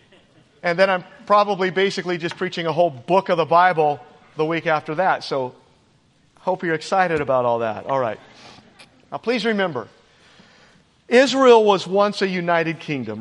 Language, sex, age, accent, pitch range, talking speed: English, male, 40-59, American, 175-210 Hz, 160 wpm